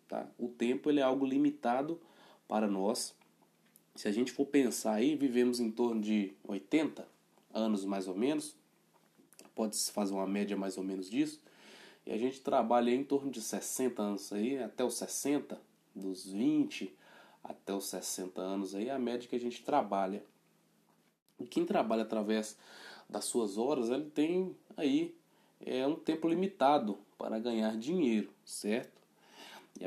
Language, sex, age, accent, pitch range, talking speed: Portuguese, male, 20-39, Brazilian, 105-150 Hz, 155 wpm